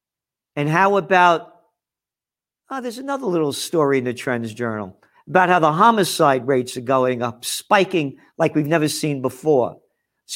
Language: English